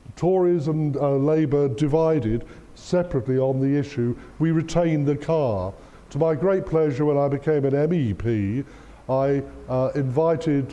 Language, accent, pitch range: English, British, 120-140 Hz